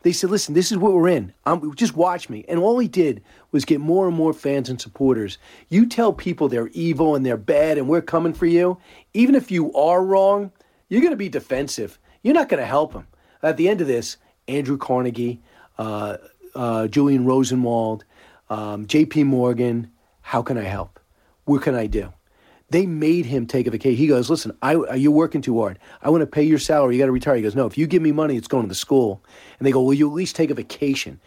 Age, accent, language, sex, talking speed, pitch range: 40-59, American, English, male, 230 wpm, 130-180 Hz